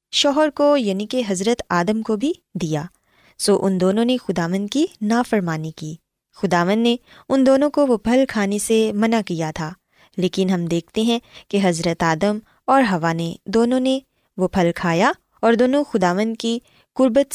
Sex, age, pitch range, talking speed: female, 20-39, 185-245 Hz, 165 wpm